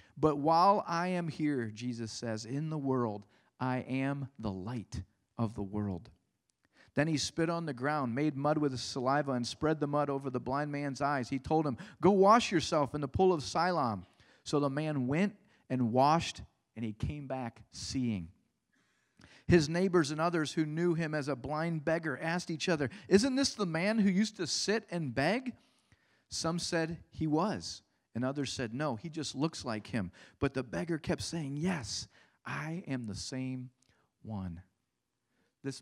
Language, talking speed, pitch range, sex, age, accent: English, 180 wpm, 120-160 Hz, male, 40-59, American